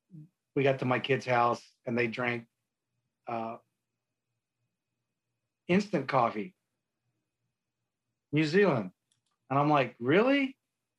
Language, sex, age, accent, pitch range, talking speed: English, male, 40-59, American, 115-145 Hz, 100 wpm